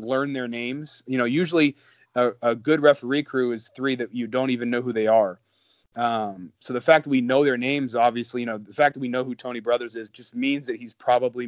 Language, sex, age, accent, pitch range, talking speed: English, male, 30-49, American, 120-145 Hz, 245 wpm